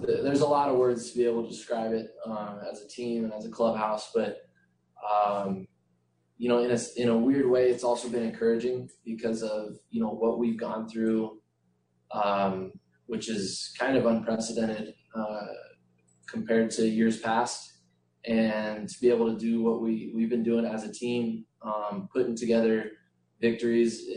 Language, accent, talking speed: English, American, 175 wpm